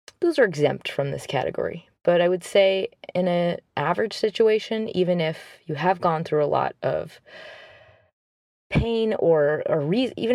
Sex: female